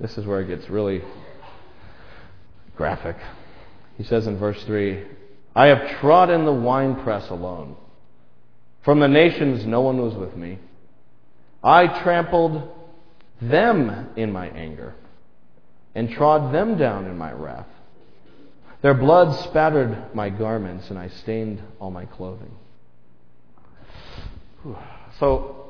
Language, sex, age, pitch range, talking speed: English, male, 40-59, 100-155 Hz, 120 wpm